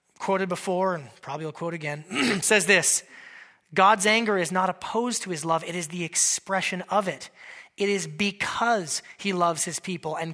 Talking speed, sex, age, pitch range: 180 wpm, male, 30-49, 175-240 Hz